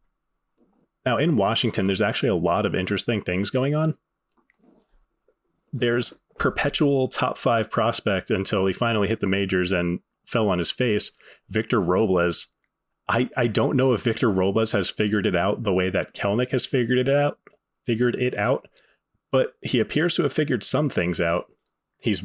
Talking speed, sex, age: 165 wpm, male, 30-49